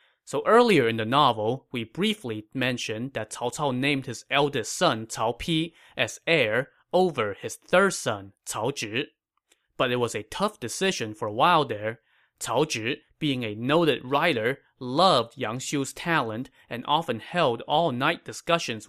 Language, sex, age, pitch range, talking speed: English, male, 20-39, 115-165 Hz, 160 wpm